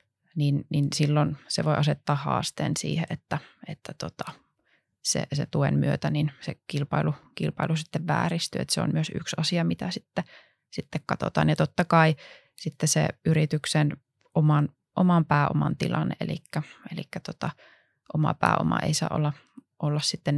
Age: 20-39